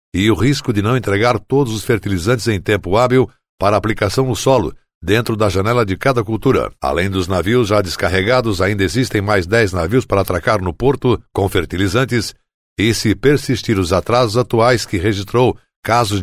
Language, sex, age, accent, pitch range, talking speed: Portuguese, male, 60-79, Brazilian, 100-125 Hz, 175 wpm